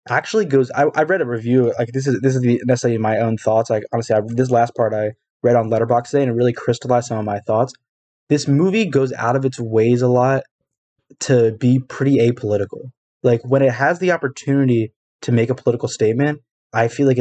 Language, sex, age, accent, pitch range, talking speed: English, male, 20-39, American, 110-130 Hz, 220 wpm